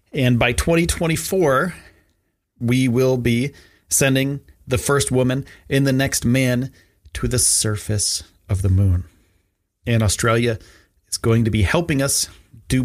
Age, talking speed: 30-49, 135 wpm